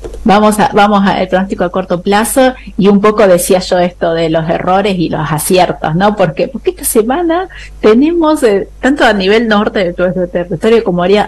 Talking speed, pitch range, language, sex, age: 190 wpm, 180-215 Hz, Spanish, female, 30-49